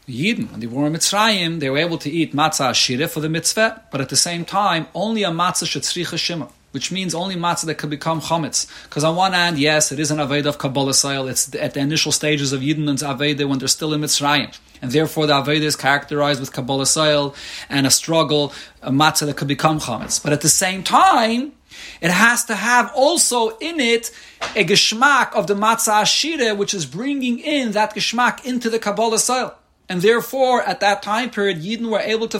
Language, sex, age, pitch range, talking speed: English, male, 30-49, 145-210 Hz, 215 wpm